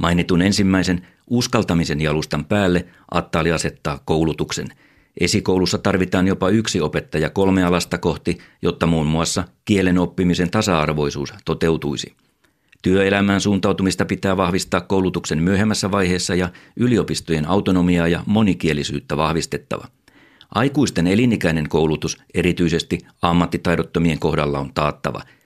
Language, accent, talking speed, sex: Finnish, native, 105 wpm, male